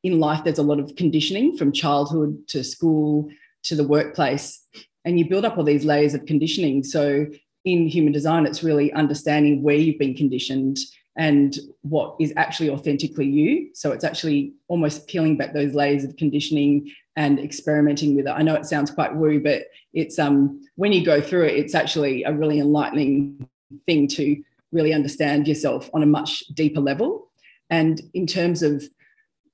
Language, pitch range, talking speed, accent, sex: English, 145-165 Hz, 175 wpm, Australian, female